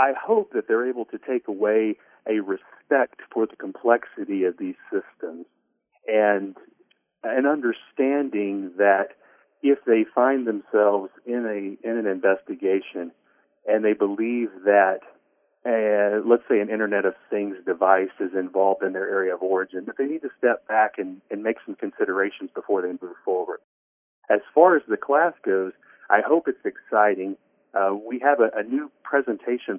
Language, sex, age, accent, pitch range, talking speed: English, male, 40-59, American, 95-125 Hz, 160 wpm